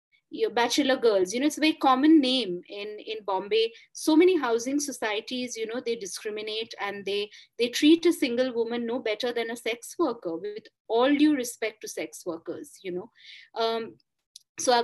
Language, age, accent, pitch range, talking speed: English, 30-49, Indian, 205-290 Hz, 185 wpm